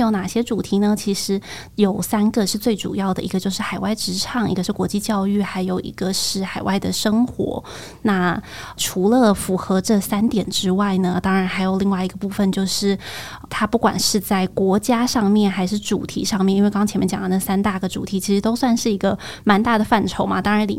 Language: Chinese